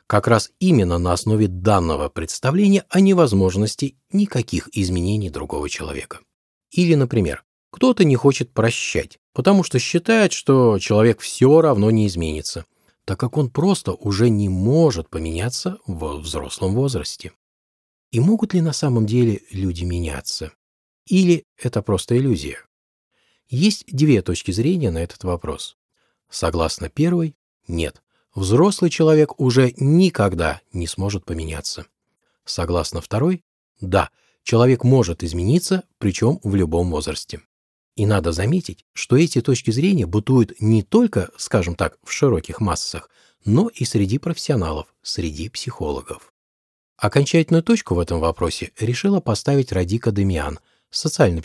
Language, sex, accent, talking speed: Russian, male, native, 130 wpm